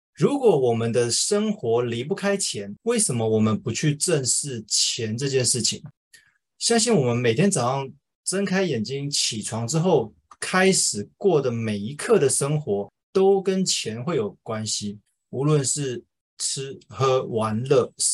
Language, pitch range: Chinese, 115-170 Hz